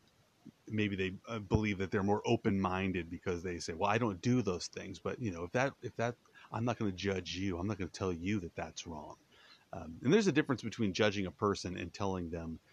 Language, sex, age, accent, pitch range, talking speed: English, male, 30-49, American, 95-115 Hz, 235 wpm